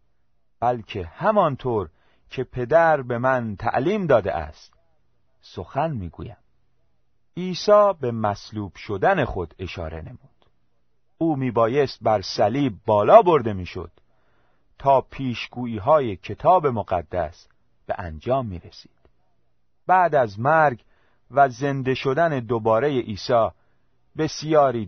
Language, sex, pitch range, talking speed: Persian, male, 95-145 Hz, 105 wpm